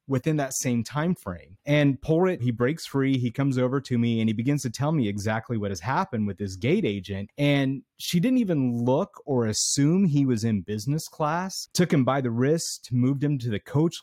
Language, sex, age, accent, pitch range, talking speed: English, male, 30-49, American, 115-145 Hz, 220 wpm